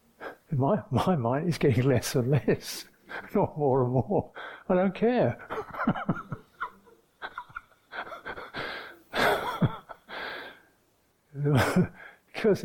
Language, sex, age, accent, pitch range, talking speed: English, male, 60-79, British, 135-185 Hz, 75 wpm